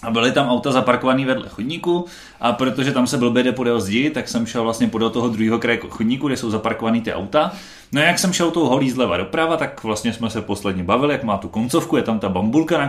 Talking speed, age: 245 wpm, 30-49